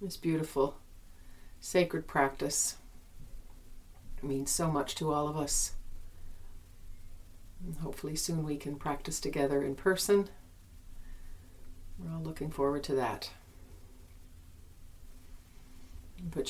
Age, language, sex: 40-59, English, female